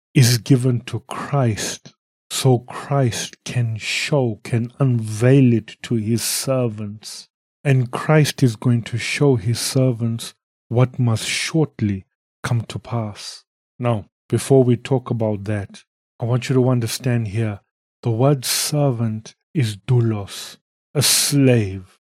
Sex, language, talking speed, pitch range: male, English, 125 wpm, 115-140 Hz